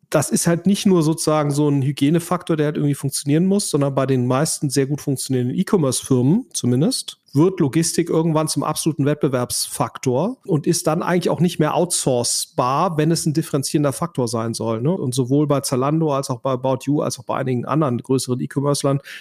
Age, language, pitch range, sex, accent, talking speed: 40-59, German, 140-170 Hz, male, German, 190 wpm